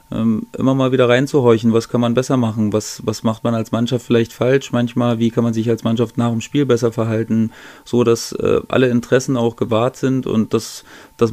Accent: German